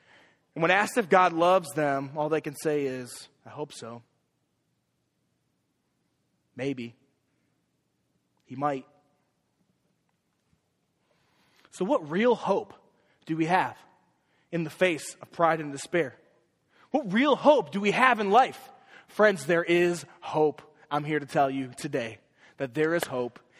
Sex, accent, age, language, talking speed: male, American, 20-39, English, 135 wpm